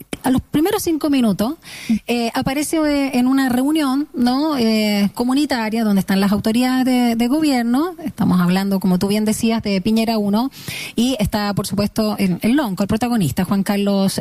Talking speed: 170 wpm